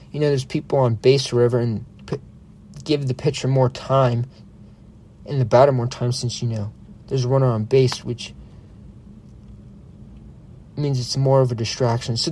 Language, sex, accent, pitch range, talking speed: English, male, American, 120-165 Hz, 170 wpm